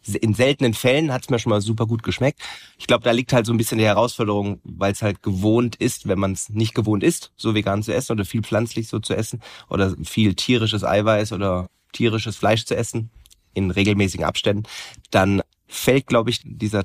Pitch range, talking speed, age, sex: 100-115 Hz, 210 wpm, 30-49, male